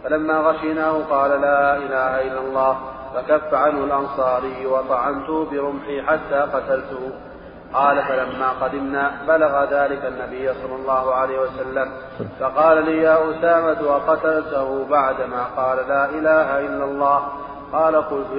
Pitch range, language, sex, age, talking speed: 130-145 Hz, Arabic, male, 30-49, 120 wpm